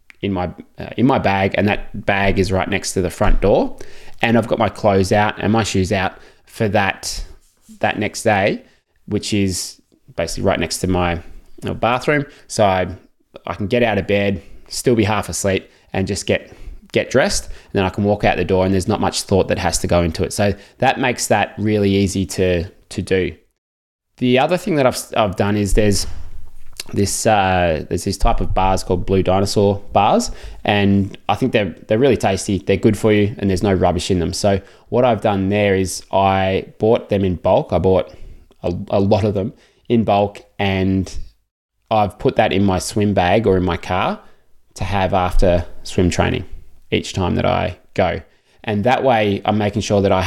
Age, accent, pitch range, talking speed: 20-39, Australian, 90-105 Hz, 205 wpm